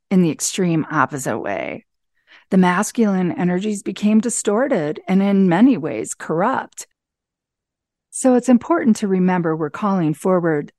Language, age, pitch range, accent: English, 40-59, 175-225 Hz, American